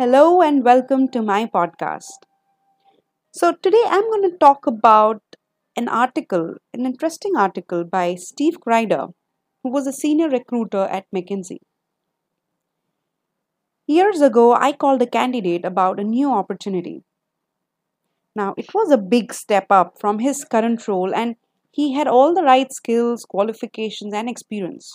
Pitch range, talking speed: 210-315 Hz, 140 wpm